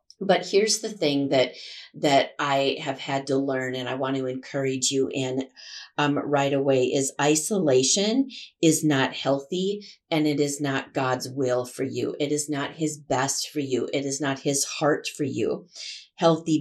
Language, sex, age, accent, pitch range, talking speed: English, female, 40-59, American, 140-165 Hz, 175 wpm